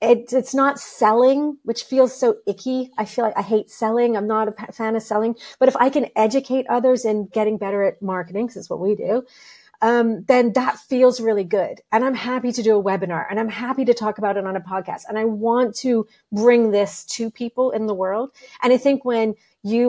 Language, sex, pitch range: English, female, 215-255 Hz